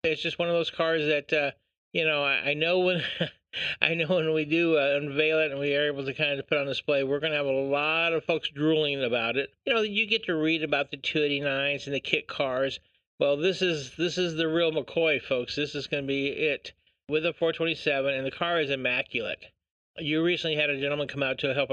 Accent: American